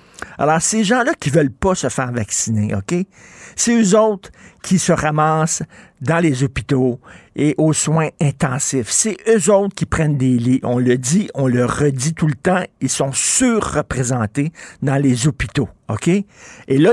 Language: French